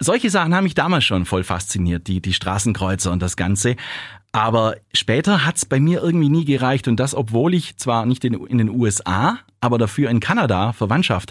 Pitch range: 100-130 Hz